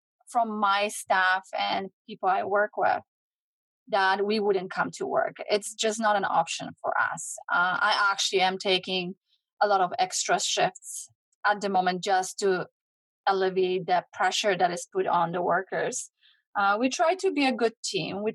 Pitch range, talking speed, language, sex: 195-250 Hz, 175 wpm, English, female